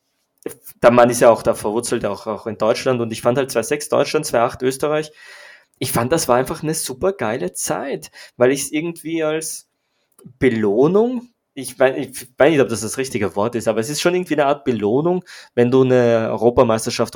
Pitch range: 110-130 Hz